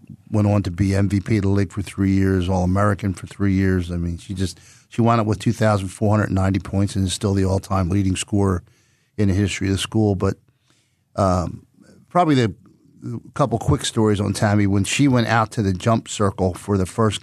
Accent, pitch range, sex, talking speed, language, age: American, 95-115 Hz, male, 200 wpm, English, 50-69